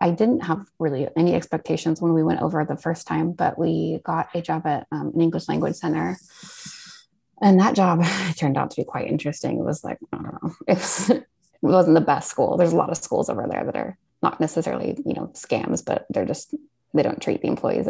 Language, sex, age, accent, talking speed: English, female, 20-39, American, 225 wpm